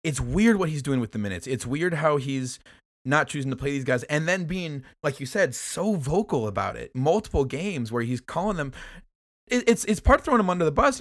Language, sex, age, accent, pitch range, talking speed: English, male, 20-39, American, 125-165 Hz, 235 wpm